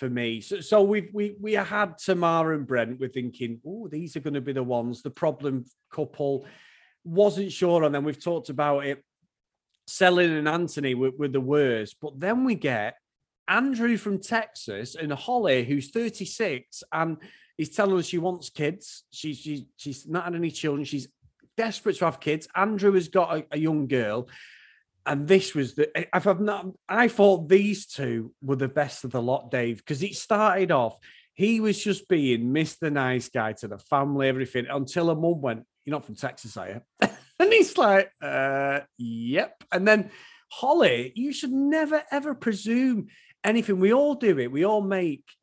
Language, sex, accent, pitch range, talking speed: English, male, British, 135-200 Hz, 185 wpm